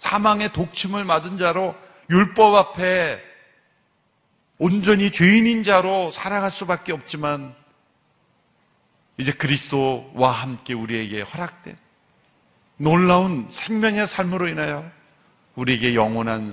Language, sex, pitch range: Korean, male, 125-185 Hz